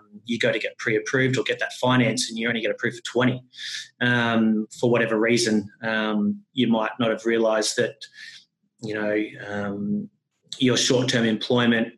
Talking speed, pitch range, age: 170 wpm, 115-135 Hz, 30-49